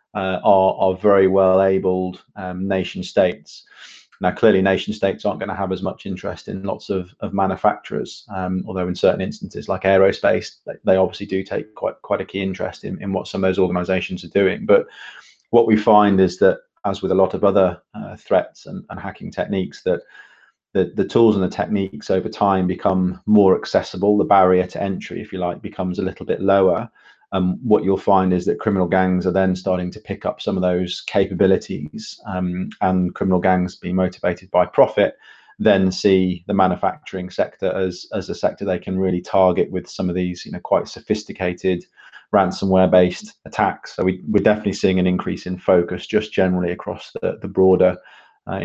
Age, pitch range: 30-49, 90-100 Hz